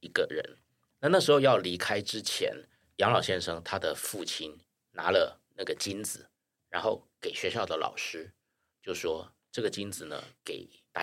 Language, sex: Chinese, male